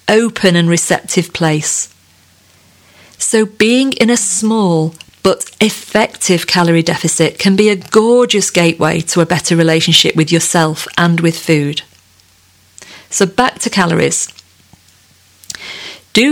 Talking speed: 120 wpm